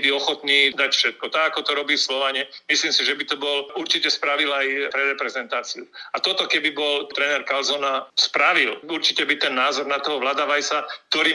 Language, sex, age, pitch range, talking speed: Slovak, male, 40-59, 140-155 Hz, 185 wpm